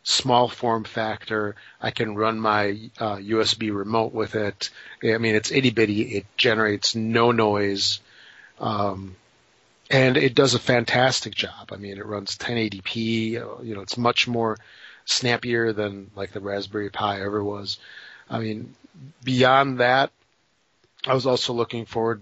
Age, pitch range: 40-59, 105-125 Hz